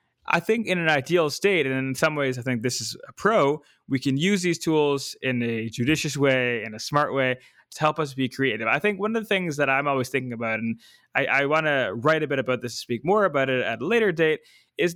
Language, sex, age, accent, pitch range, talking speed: English, male, 20-39, American, 130-185 Hz, 255 wpm